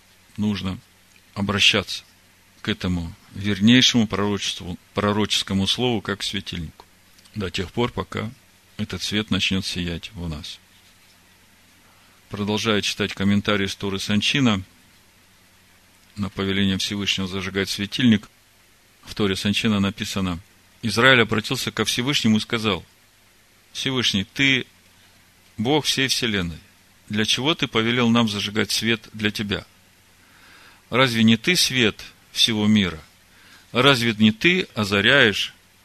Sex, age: male, 40-59